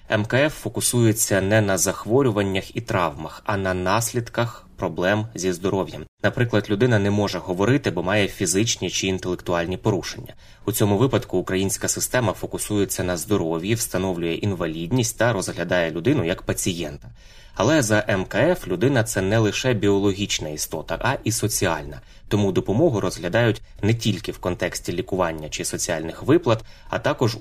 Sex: male